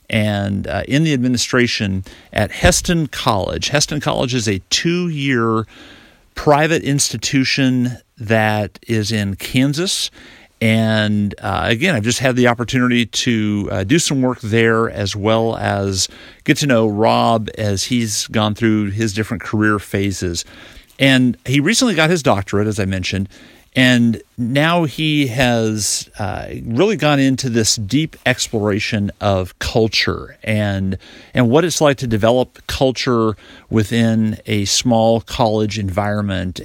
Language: English